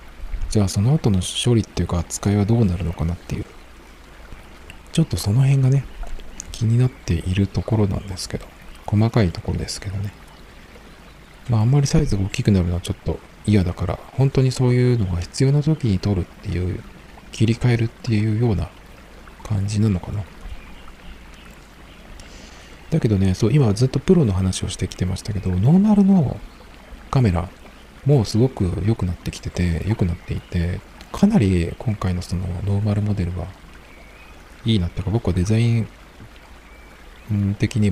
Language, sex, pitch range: Japanese, male, 90-115 Hz